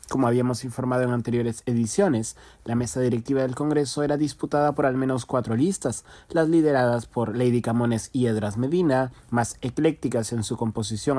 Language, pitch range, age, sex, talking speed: Spanish, 120-145 Hz, 30-49, male, 165 wpm